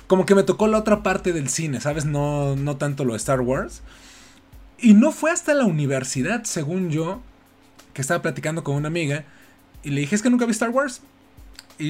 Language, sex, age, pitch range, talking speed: Spanish, male, 30-49, 140-210 Hz, 205 wpm